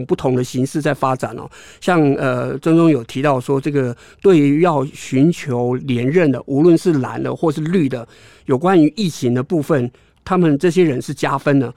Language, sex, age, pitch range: Chinese, male, 50-69, 130-165 Hz